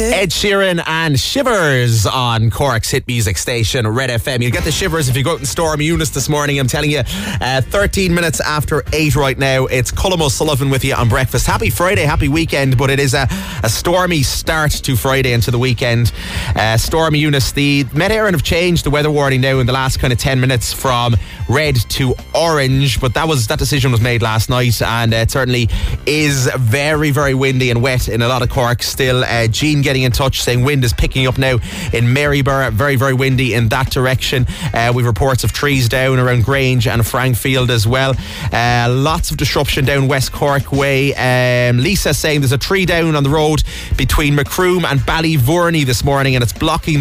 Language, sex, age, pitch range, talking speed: English, male, 30-49, 120-145 Hz, 210 wpm